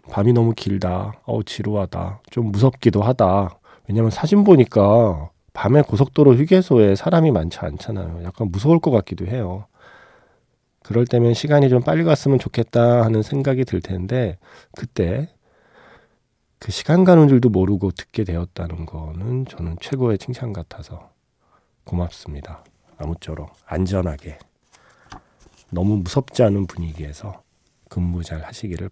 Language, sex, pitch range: Korean, male, 90-130 Hz